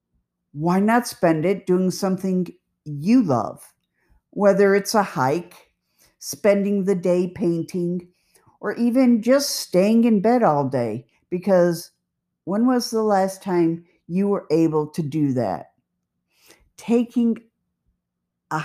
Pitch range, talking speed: 135-205 Hz, 120 wpm